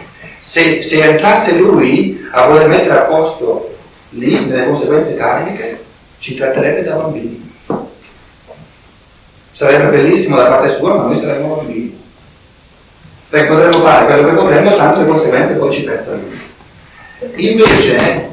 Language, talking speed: Italian, 125 wpm